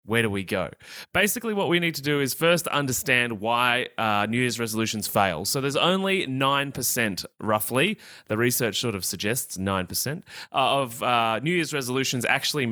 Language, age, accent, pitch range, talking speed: English, 20-39, Australian, 105-140 Hz, 175 wpm